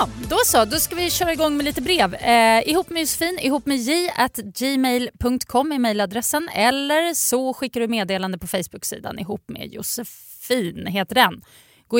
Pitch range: 190-275 Hz